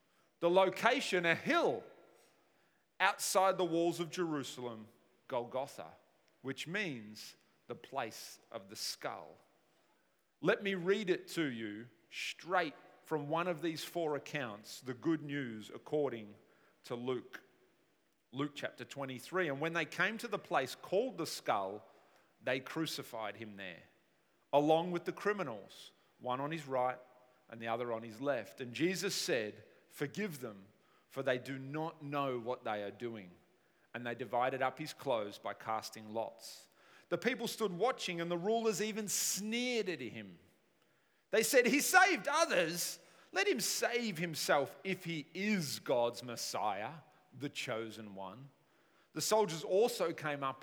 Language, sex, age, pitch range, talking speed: English, male, 40-59, 125-185 Hz, 145 wpm